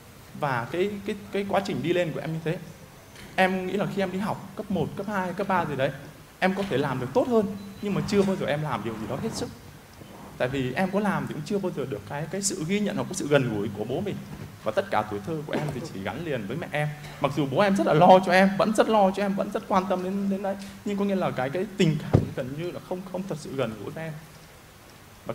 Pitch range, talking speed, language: 145-200 Hz, 295 wpm, Vietnamese